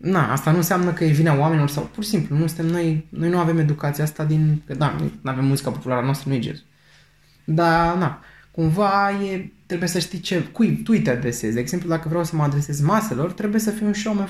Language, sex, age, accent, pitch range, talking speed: Romanian, male, 20-39, native, 145-185 Hz, 230 wpm